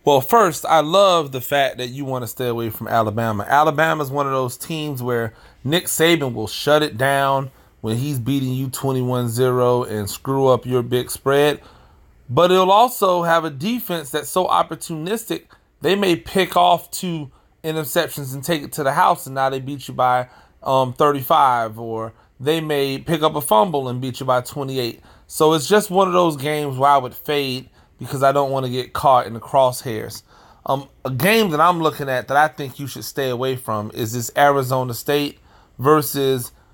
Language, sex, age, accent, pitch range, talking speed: English, male, 30-49, American, 125-155 Hz, 195 wpm